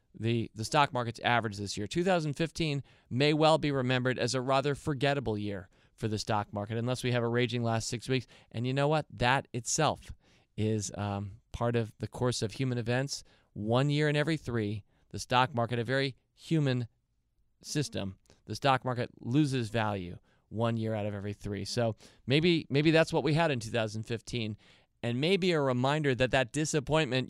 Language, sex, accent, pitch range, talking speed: English, male, American, 110-140 Hz, 180 wpm